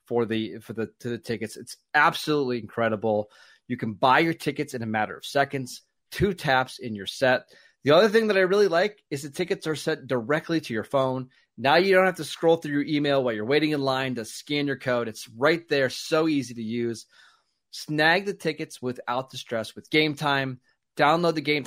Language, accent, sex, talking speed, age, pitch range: English, American, male, 215 wpm, 30-49, 115-150 Hz